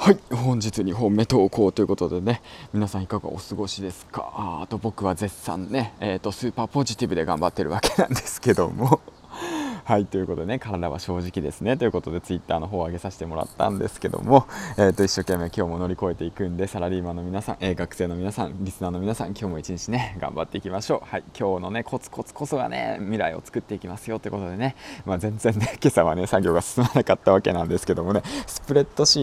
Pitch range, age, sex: 90-120 Hz, 20-39, male